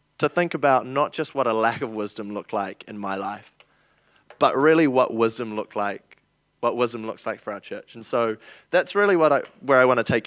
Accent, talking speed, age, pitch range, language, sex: Australian, 230 wpm, 20-39, 110-150 Hz, English, male